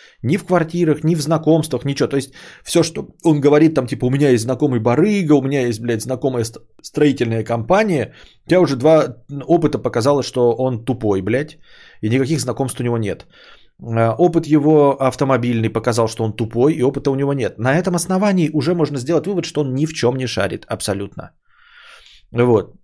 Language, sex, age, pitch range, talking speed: Bulgarian, male, 20-39, 115-150 Hz, 185 wpm